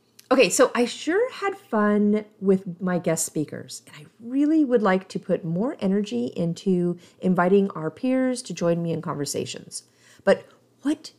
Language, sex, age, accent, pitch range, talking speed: English, female, 40-59, American, 165-240 Hz, 160 wpm